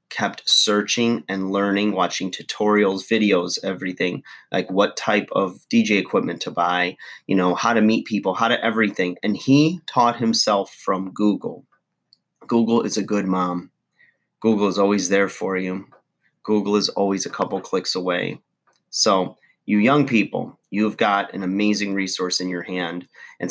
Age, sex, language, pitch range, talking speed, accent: 30-49, male, English, 95-110 Hz, 160 wpm, American